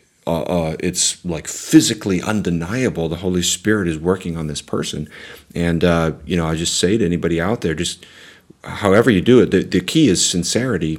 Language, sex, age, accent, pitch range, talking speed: English, male, 40-59, American, 80-100 Hz, 190 wpm